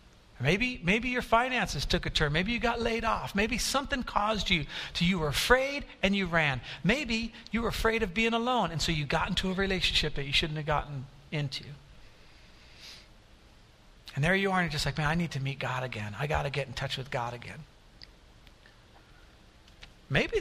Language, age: English, 50-69